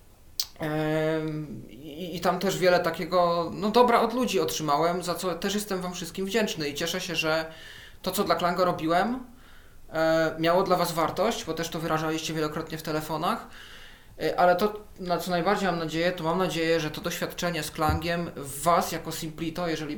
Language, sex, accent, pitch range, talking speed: Polish, male, native, 155-180 Hz, 170 wpm